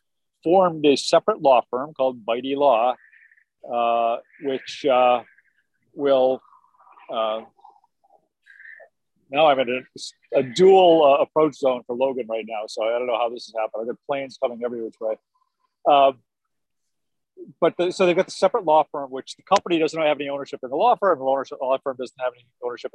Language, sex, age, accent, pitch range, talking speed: English, male, 50-69, American, 115-145 Hz, 180 wpm